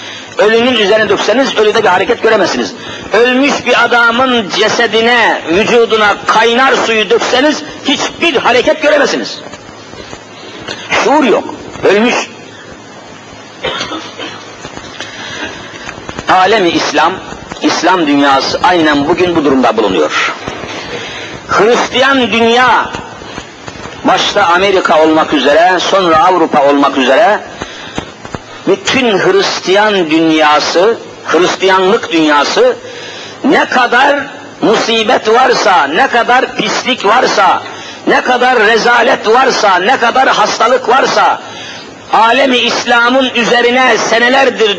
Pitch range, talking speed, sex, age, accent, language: 205-275 Hz, 85 wpm, male, 50-69, native, Turkish